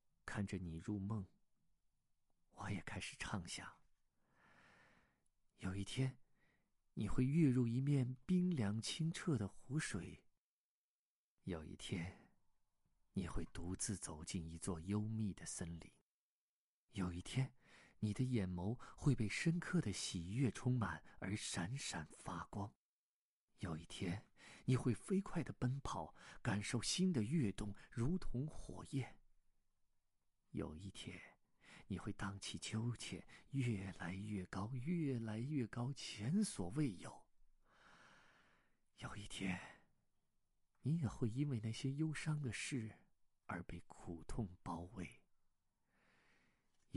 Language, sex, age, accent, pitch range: Chinese, male, 50-69, native, 95-130 Hz